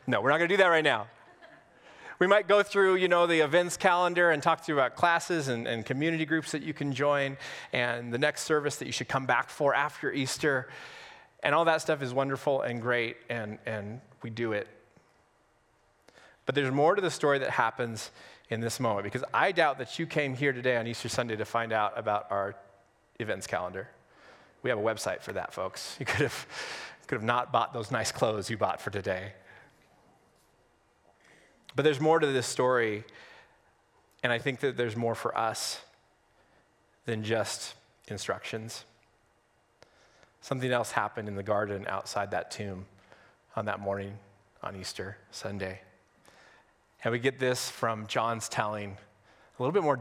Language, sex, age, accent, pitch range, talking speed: English, male, 30-49, American, 110-140 Hz, 180 wpm